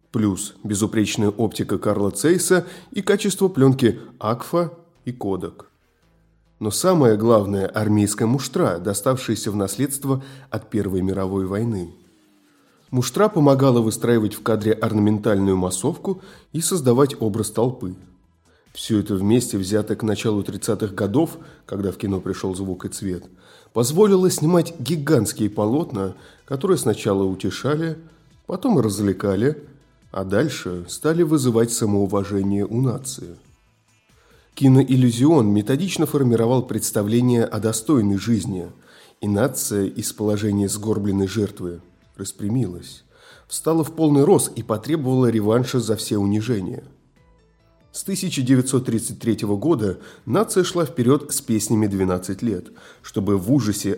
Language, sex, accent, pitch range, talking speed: Russian, male, native, 100-135 Hz, 115 wpm